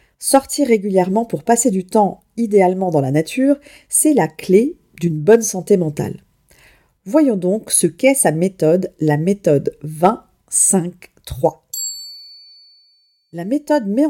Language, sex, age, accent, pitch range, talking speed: French, female, 40-59, French, 165-235 Hz, 125 wpm